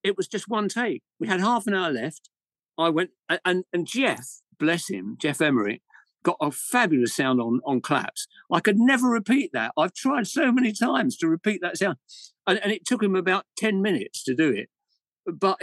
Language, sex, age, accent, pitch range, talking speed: English, male, 50-69, British, 140-215 Hz, 205 wpm